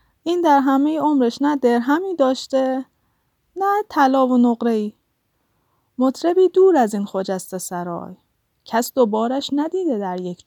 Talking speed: 140 wpm